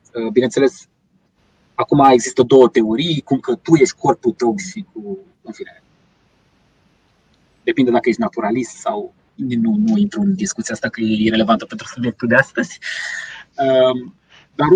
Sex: male